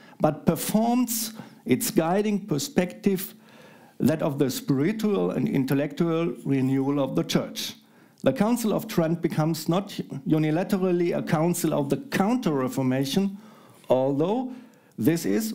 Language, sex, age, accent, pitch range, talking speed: English, male, 50-69, German, 150-210 Hz, 115 wpm